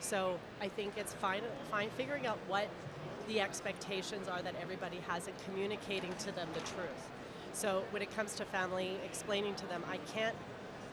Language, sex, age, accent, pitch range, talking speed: English, female, 30-49, American, 170-200 Hz, 175 wpm